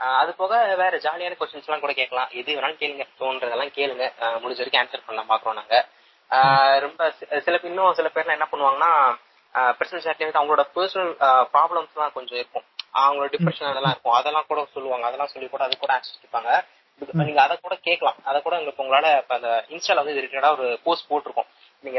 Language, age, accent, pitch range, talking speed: Tamil, 20-39, native, 130-165 Hz, 165 wpm